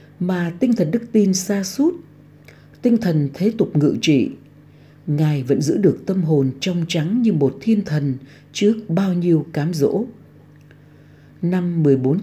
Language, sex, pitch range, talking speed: Vietnamese, female, 145-185 Hz, 155 wpm